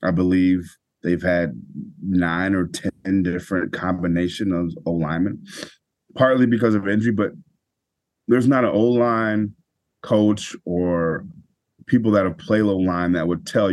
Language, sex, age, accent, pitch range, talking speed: English, male, 30-49, American, 90-110 Hz, 130 wpm